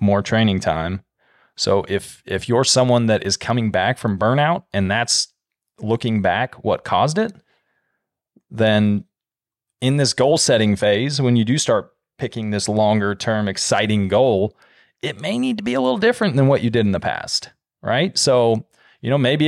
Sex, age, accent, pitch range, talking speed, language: male, 30-49, American, 105-130 Hz, 175 wpm, English